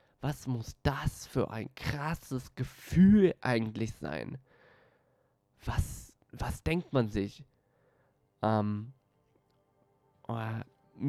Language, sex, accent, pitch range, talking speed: German, male, German, 120-155 Hz, 90 wpm